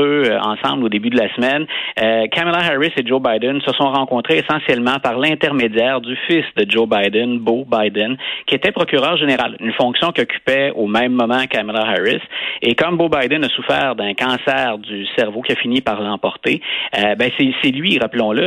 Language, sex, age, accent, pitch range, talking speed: French, male, 30-49, Canadian, 110-150 Hz, 190 wpm